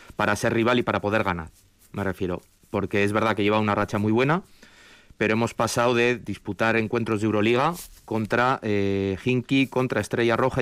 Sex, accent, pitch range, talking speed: male, Spanish, 100-115 Hz, 180 wpm